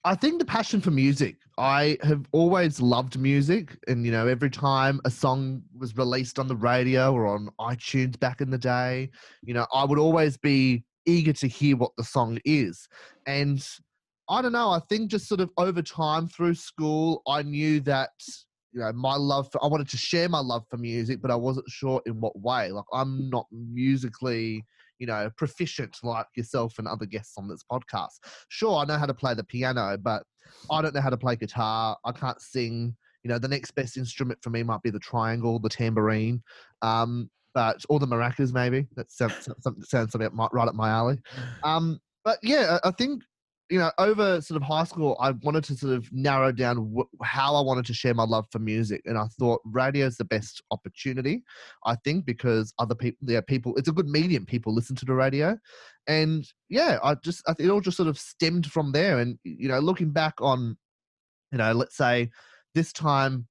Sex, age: male, 20-39